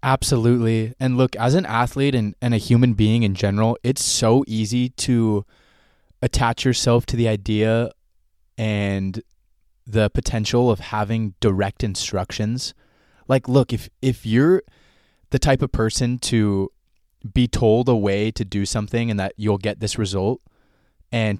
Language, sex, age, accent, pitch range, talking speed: English, male, 20-39, American, 100-125 Hz, 150 wpm